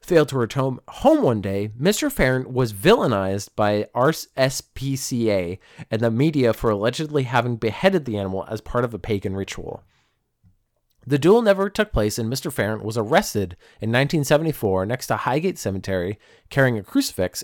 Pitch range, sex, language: 110-155 Hz, male, English